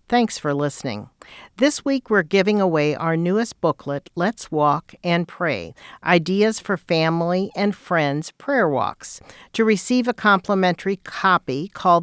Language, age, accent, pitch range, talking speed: English, 50-69, American, 155-195 Hz, 140 wpm